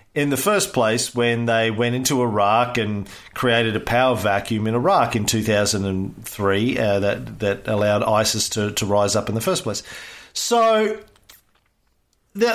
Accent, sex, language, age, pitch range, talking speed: Australian, male, English, 40-59, 110-145 Hz, 160 wpm